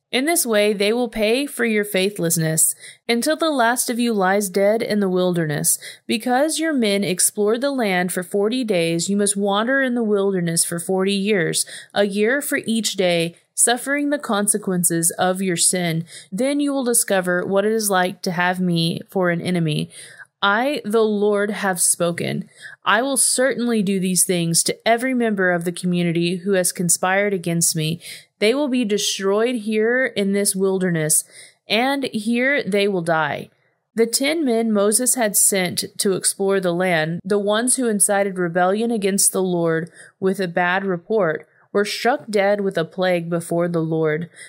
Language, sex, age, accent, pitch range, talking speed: English, female, 30-49, American, 180-225 Hz, 175 wpm